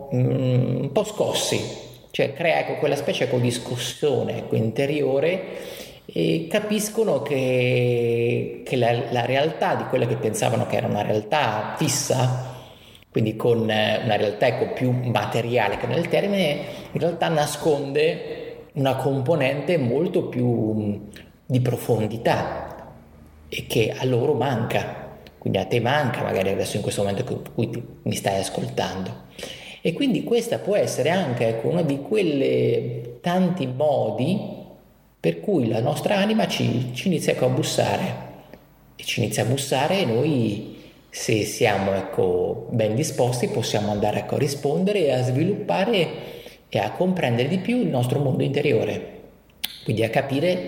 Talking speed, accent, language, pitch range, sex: 145 wpm, native, Italian, 110-150 Hz, male